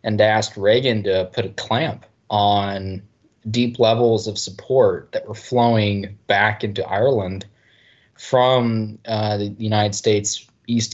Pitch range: 105-115 Hz